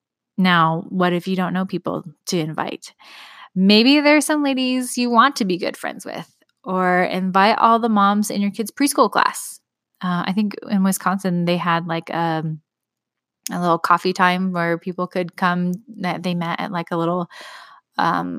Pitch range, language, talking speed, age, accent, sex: 175-220 Hz, English, 185 wpm, 10-29, American, female